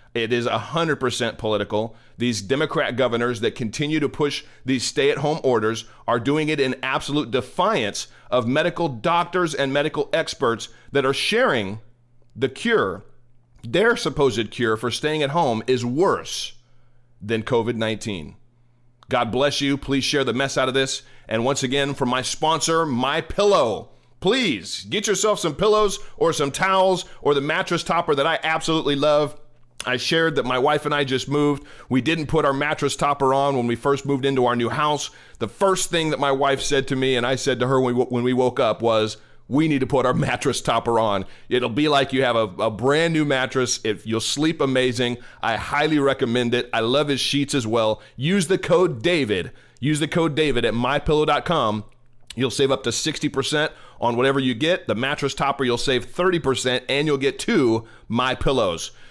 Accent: American